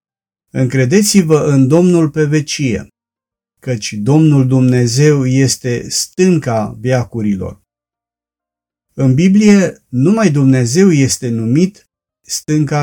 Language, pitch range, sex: Romanian, 115-155 Hz, male